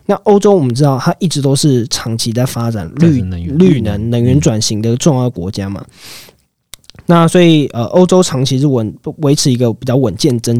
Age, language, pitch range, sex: 20-39, Chinese, 110-150 Hz, male